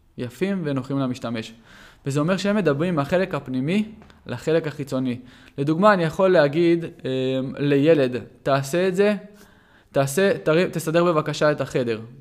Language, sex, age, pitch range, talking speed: Hebrew, male, 20-39, 130-180 Hz, 125 wpm